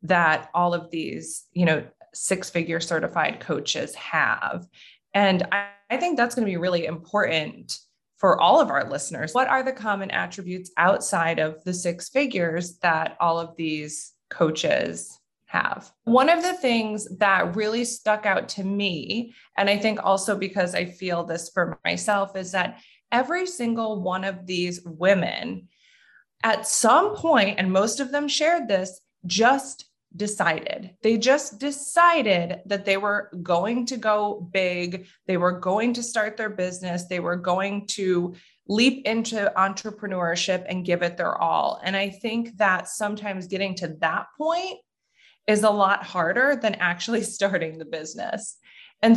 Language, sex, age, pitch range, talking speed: English, female, 20-39, 180-225 Hz, 155 wpm